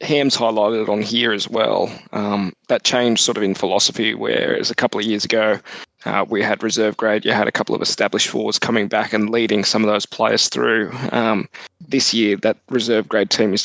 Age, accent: 20-39, Australian